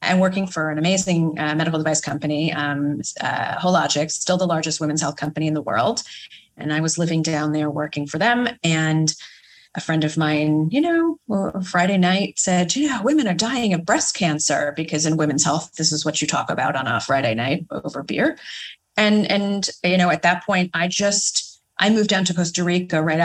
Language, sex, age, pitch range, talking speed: English, female, 30-49, 150-185 Hz, 205 wpm